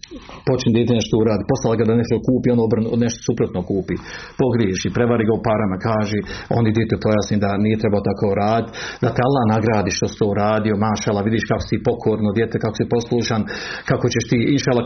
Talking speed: 205 wpm